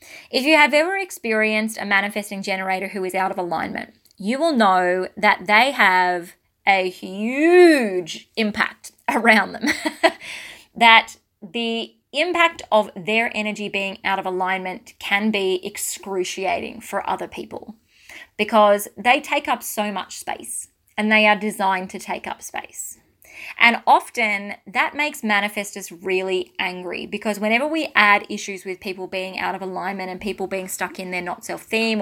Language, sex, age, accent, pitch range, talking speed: English, female, 20-39, Australian, 190-225 Hz, 150 wpm